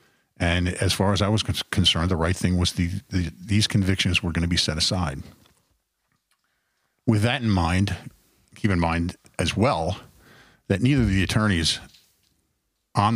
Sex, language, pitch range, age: male, English, 85-105 Hz, 50-69